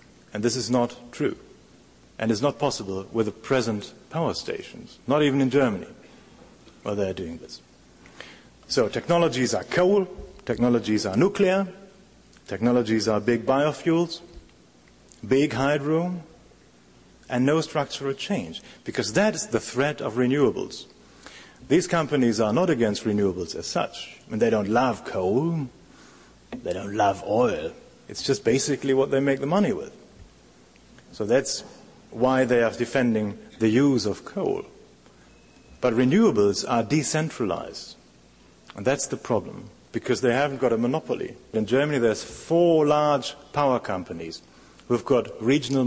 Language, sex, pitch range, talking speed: English, male, 100-145 Hz, 140 wpm